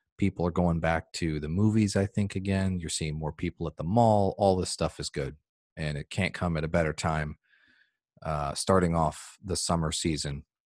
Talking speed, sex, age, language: 205 wpm, male, 40-59, English